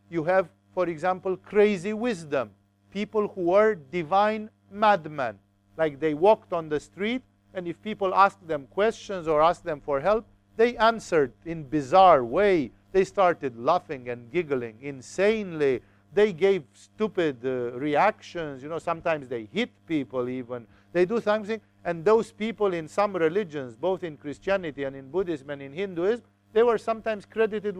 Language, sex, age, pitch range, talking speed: English, male, 50-69, 145-200 Hz, 160 wpm